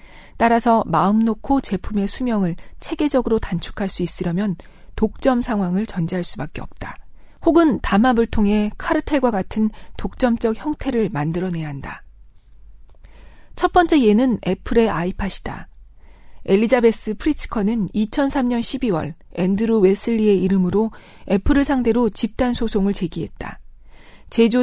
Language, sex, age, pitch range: Korean, female, 40-59, 185-250 Hz